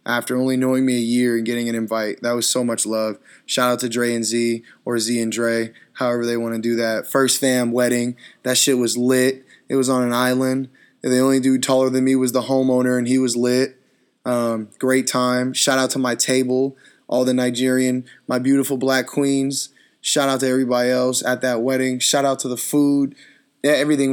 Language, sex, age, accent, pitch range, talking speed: English, male, 20-39, American, 120-130 Hz, 210 wpm